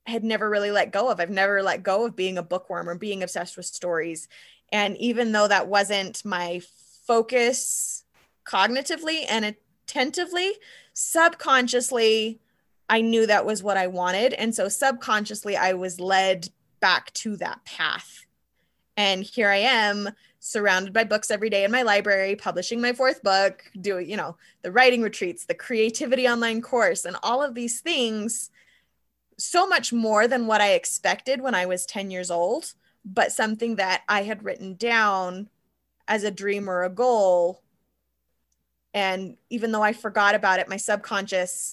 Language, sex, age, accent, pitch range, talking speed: English, female, 20-39, American, 185-235 Hz, 160 wpm